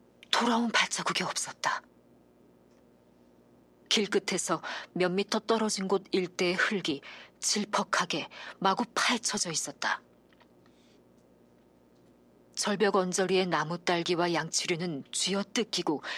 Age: 40-59